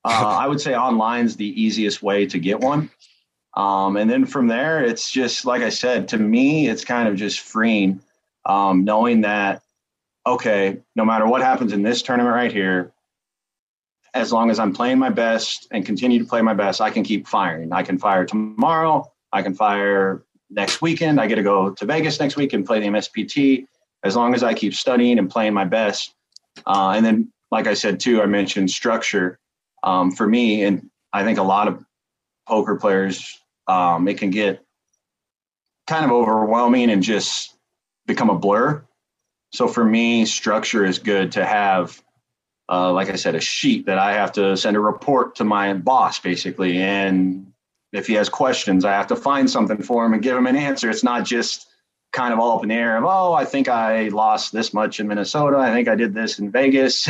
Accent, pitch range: American, 100-130 Hz